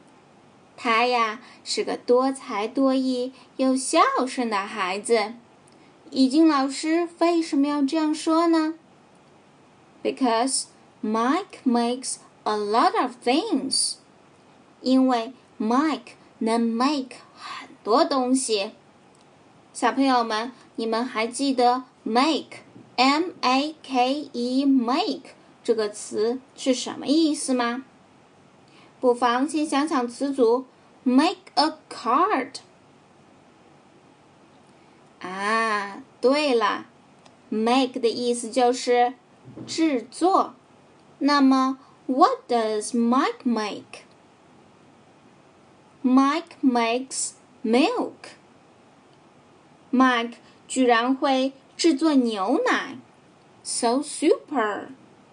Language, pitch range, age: Chinese, 235-280 Hz, 10-29